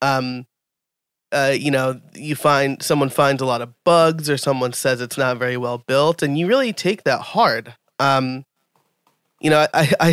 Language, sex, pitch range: English, male, 125-150 Hz